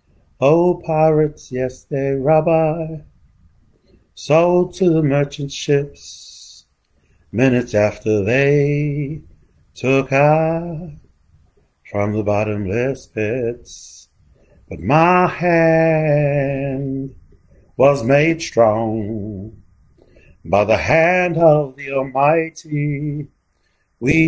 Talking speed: 80 wpm